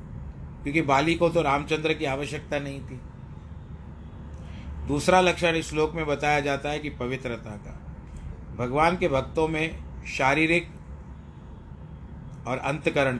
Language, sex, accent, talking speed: Hindi, male, native, 125 wpm